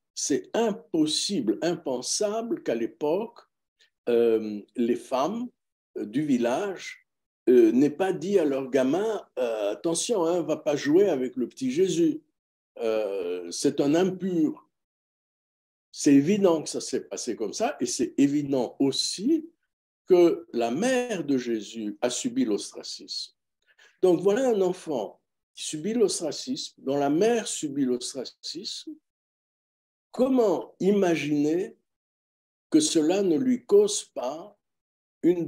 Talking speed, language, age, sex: 125 wpm, French, 60-79, male